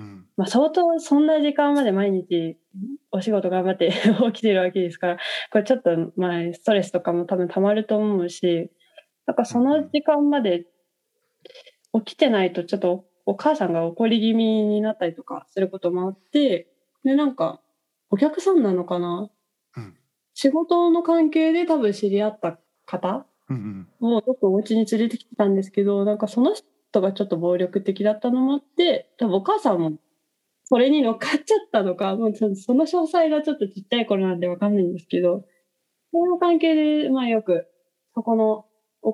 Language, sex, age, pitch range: Japanese, female, 20-39, 185-275 Hz